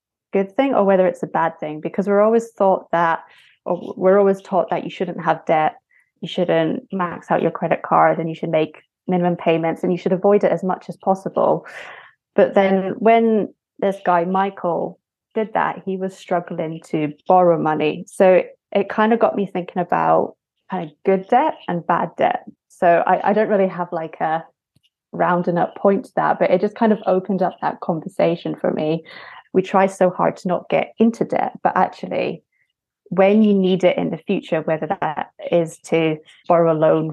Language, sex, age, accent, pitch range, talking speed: English, female, 20-39, British, 165-195 Hz, 200 wpm